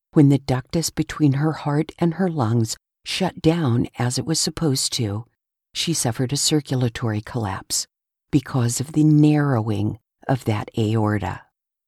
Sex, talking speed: female, 140 wpm